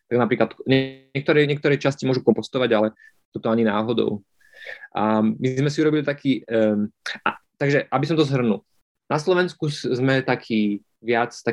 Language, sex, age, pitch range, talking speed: Slovak, male, 20-39, 115-140 Hz, 150 wpm